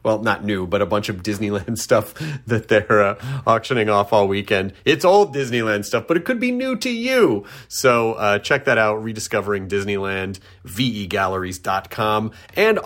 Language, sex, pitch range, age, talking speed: English, male, 110-155 Hz, 30-49, 170 wpm